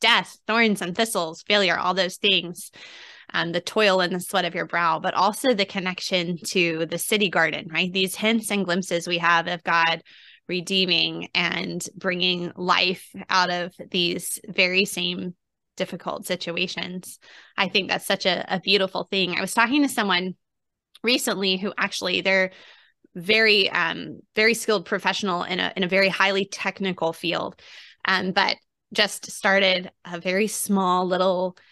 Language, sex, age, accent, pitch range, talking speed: English, female, 20-39, American, 180-215 Hz, 155 wpm